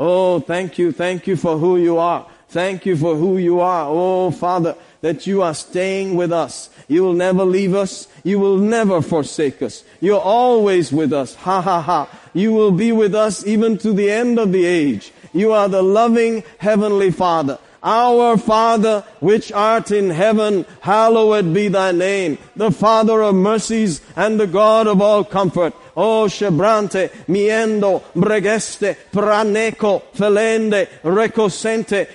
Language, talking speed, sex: English, 155 wpm, male